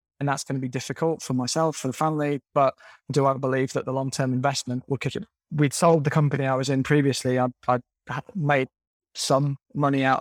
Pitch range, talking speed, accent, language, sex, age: 130-140 Hz, 225 wpm, British, English, male, 20-39